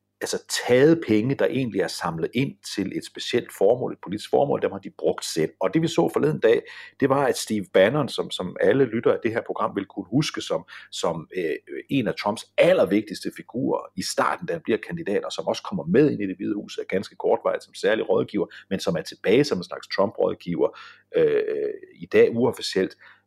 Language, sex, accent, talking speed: Danish, male, native, 210 wpm